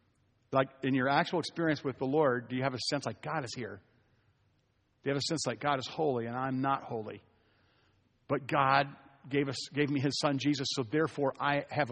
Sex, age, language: male, 50-69, English